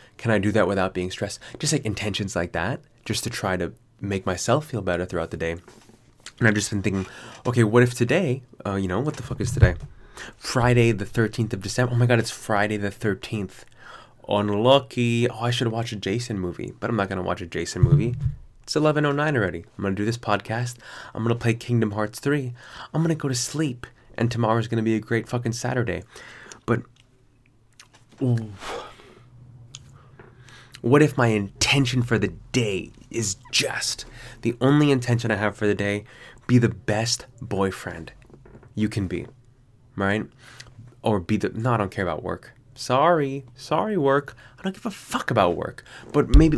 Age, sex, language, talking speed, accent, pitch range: 20-39, male, English, 190 wpm, American, 105-125 Hz